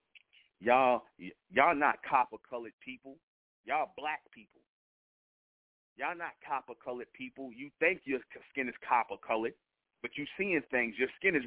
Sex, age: male, 30-49